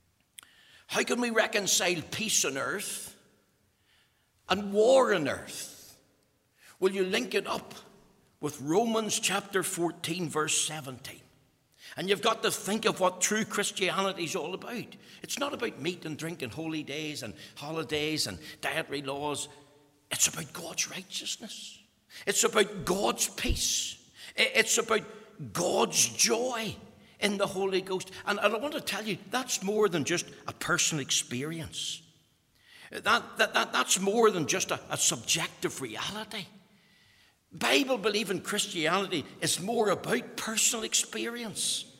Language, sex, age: English, male, 60-79